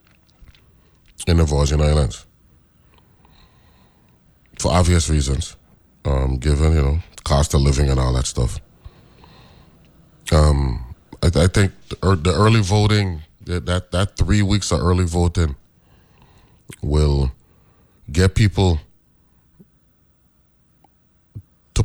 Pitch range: 75-95 Hz